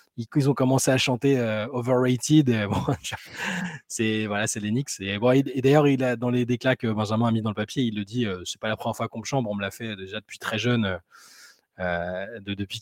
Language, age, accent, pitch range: French, 20-39, French, 110-145 Hz